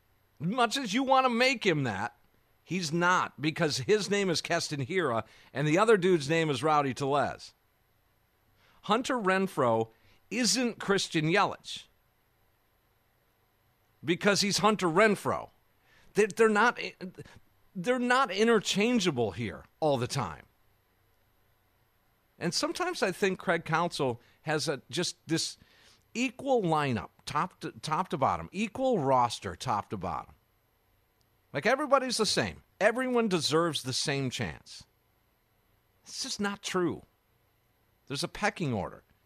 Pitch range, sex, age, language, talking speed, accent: 110-180 Hz, male, 50-69, English, 125 wpm, American